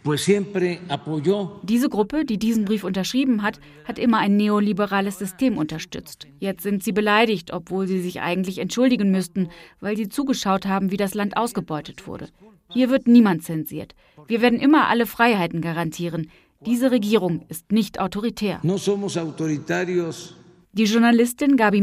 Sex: female